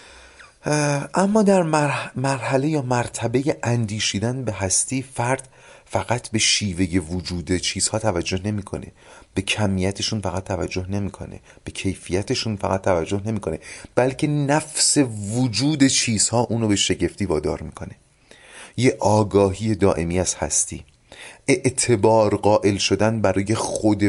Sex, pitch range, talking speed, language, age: male, 90-120 Hz, 110 wpm, Persian, 30-49